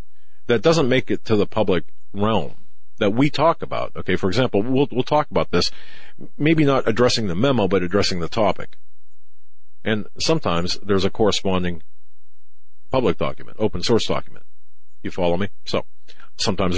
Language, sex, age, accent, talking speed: English, male, 50-69, American, 155 wpm